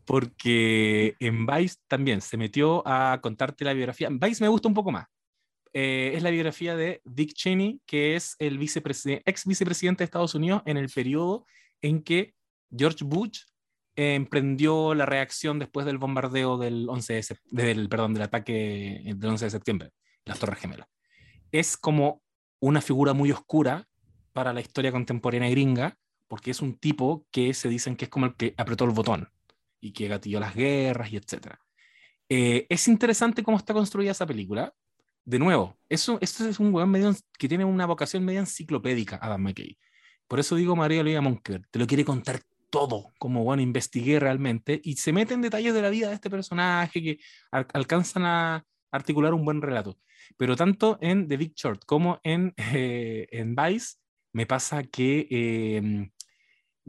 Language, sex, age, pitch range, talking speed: Spanish, male, 20-39, 120-170 Hz, 175 wpm